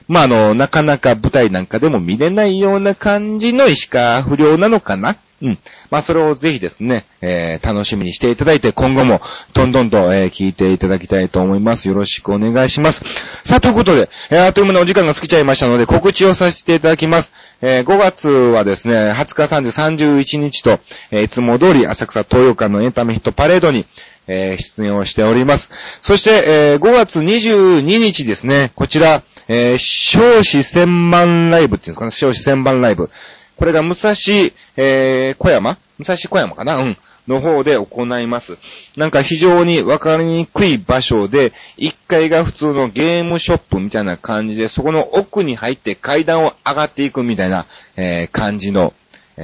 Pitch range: 110-165 Hz